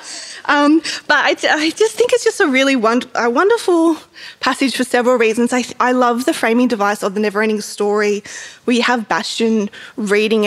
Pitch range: 210-265 Hz